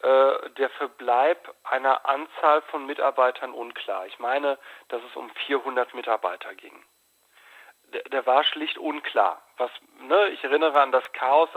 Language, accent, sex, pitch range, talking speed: German, German, male, 140-185 Hz, 140 wpm